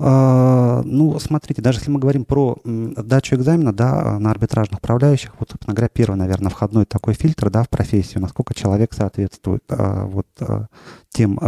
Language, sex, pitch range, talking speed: Russian, male, 105-125 Hz, 135 wpm